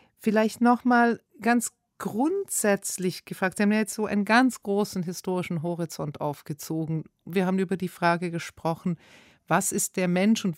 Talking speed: 155 wpm